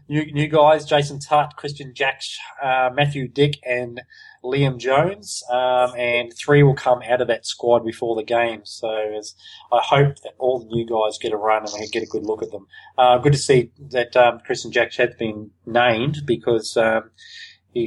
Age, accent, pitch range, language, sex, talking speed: 20-39, Australian, 105-130 Hz, English, male, 200 wpm